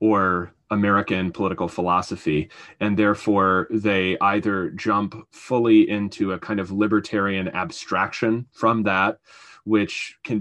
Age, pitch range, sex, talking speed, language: 30-49, 100-115 Hz, male, 115 wpm, English